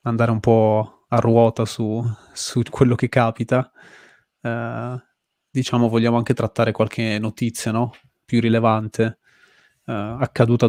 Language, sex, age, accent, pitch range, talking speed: Italian, male, 20-39, native, 110-120 Hz, 125 wpm